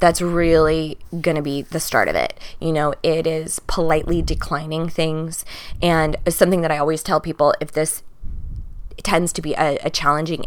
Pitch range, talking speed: 155-185 Hz, 180 wpm